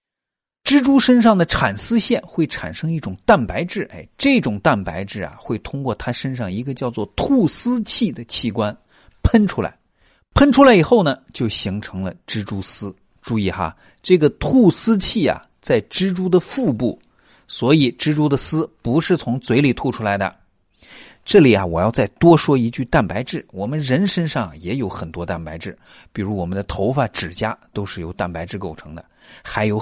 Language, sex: Chinese, male